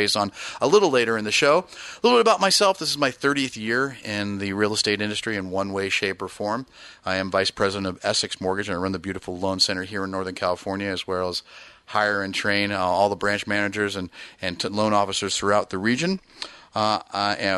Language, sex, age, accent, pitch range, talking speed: English, male, 30-49, American, 95-110 Hz, 230 wpm